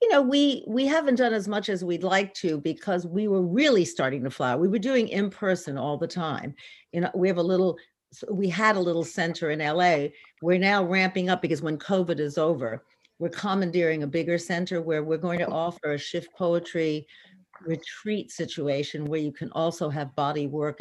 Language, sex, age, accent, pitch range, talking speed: English, female, 50-69, American, 160-205 Hz, 210 wpm